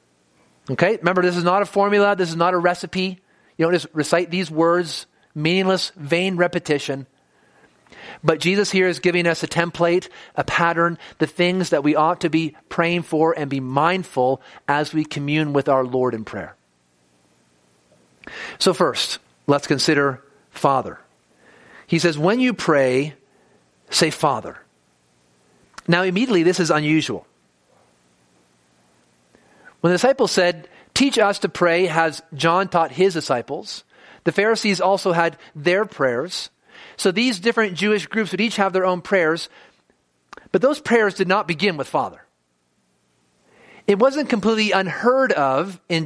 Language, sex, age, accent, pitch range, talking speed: English, male, 40-59, American, 135-190 Hz, 145 wpm